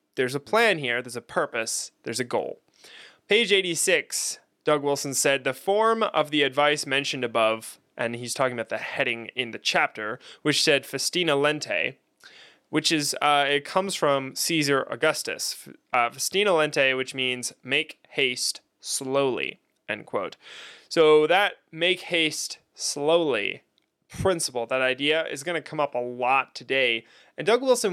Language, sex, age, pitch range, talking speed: English, male, 20-39, 130-160 Hz, 155 wpm